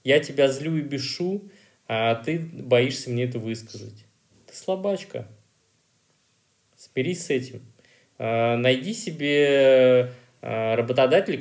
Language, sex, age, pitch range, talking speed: Russian, male, 20-39, 115-140 Hz, 100 wpm